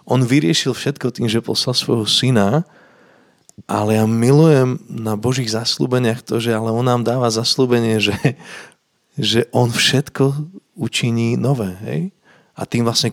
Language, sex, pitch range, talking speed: Slovak, male, 105-120 Hz, 140 wpm